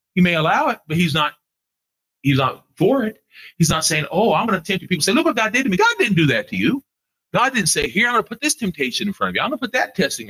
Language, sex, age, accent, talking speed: English, male, 40-59, American, 310 wpm